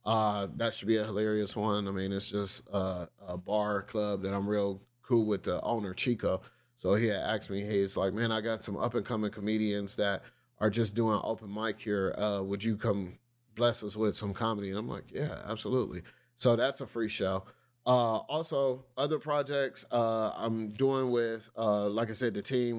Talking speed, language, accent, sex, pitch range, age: 205 wpm, English, American, male, 100-115 Hz, 30-49